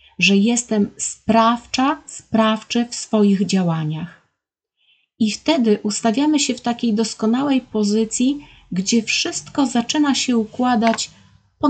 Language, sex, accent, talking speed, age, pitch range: Polish, female, native, 110 wpm, 30-49, 185-230 Hz